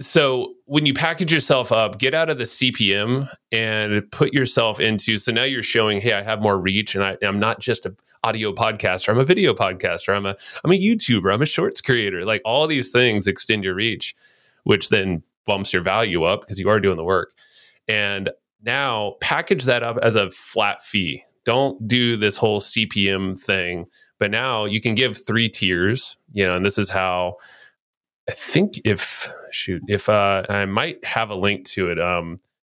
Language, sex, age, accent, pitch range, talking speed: English, male, 30-49, American, 95-125 Hz, 195 wpm